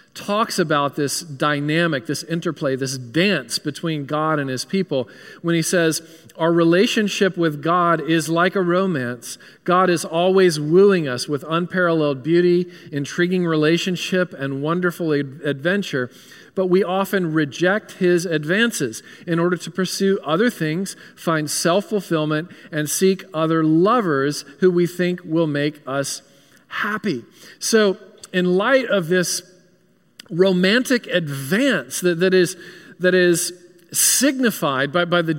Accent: American